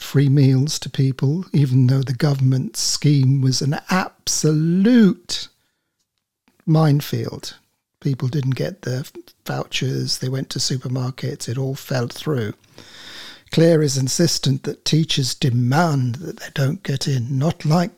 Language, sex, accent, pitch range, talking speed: English, male, British, 130-180 Hz, 130 wpm